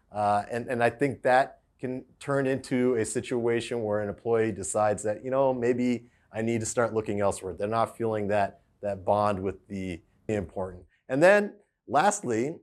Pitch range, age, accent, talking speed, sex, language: 105-130 Hz, 30-49, American, 175 wpm, male, English